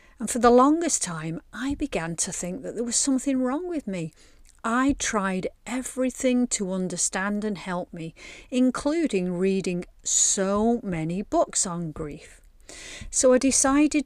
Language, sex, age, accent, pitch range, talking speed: English, female, 40-59, British, 175-235 Hz, 145 wpm